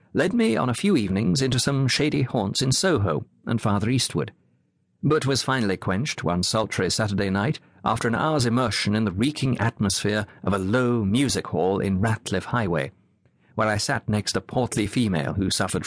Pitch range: 100-135 Hz